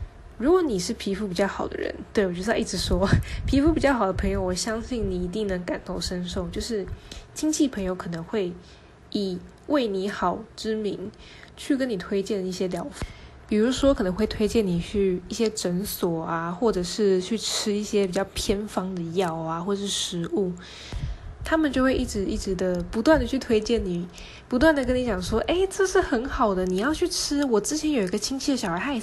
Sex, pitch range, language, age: female, 185-250 Hz, Chinese, 10-29